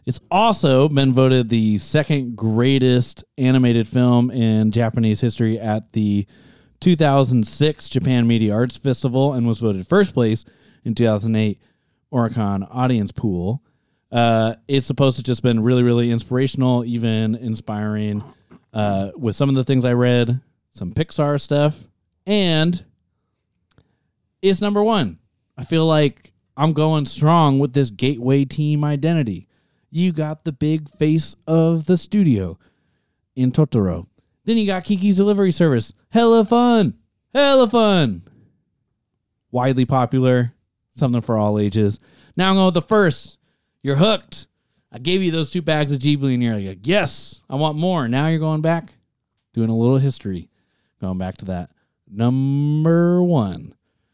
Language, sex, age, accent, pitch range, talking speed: English, male, 30-49, American, 115-155 Hz, 145 wpm